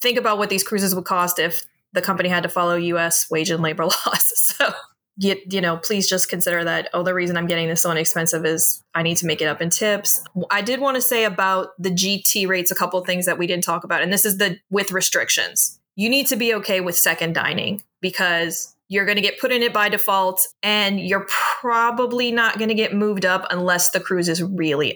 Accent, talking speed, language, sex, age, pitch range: American, 235 wpm, English, female, 20-39, 175-205 Hz